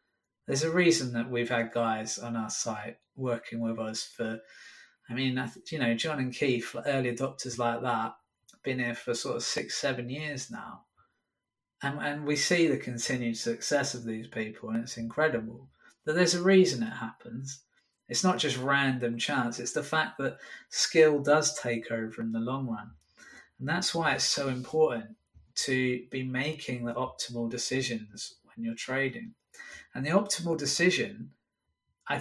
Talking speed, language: 170 wpm, English